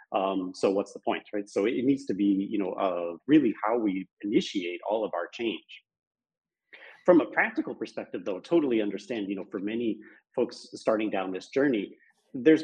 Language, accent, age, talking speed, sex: English, American, 40-59, 185 wpm, male